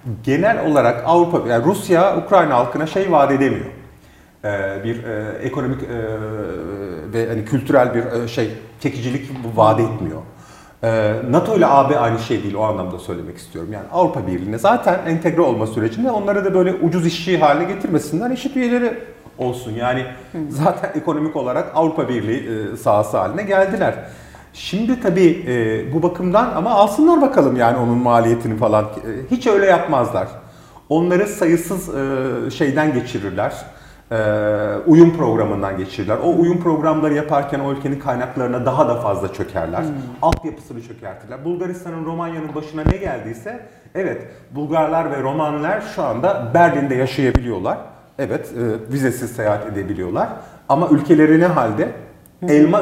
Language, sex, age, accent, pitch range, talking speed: Turkish, male, 40-59, native, 115-170 Hz, 125 wpm